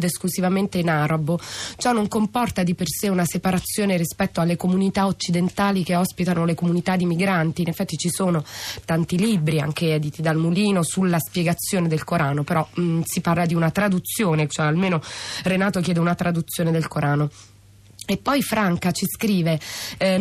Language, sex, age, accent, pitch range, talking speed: Italian, female, 20-39, native, 165-195 Hz, 165 wpm